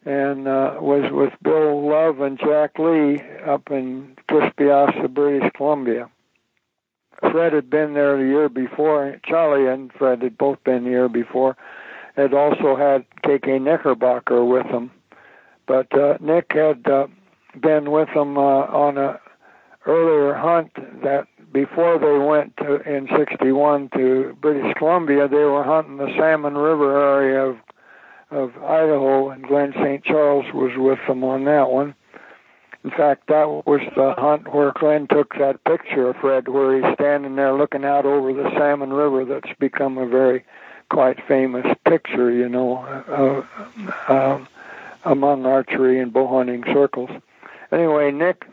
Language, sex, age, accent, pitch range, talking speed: English, male, 60-79, American, 135-150 Hz, 150 wpm